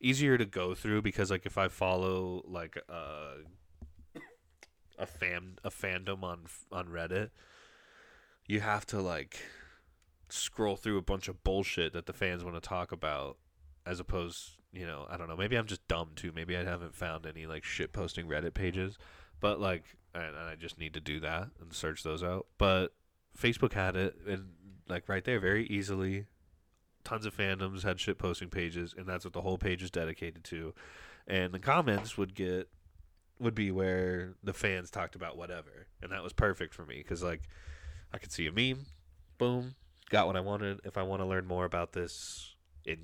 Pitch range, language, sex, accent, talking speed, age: 80-95 Hz, English, male, American, 190 wpm, 20-39